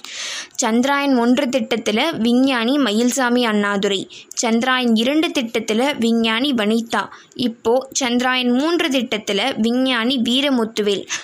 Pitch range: 220-285 Hz